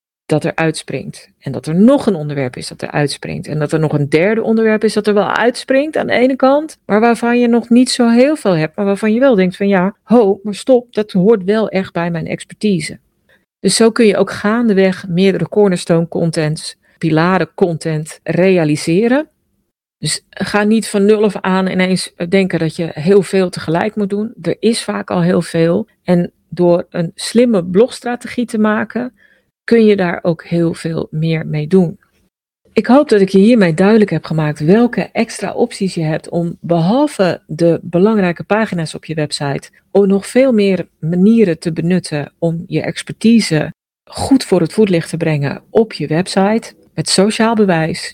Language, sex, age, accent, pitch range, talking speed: Dutch, female, 40-59, Dutch, 170-215 Hz, 185 wpm